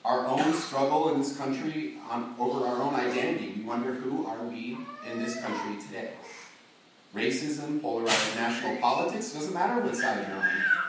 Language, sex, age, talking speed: English, male, 30-49, 160 wpm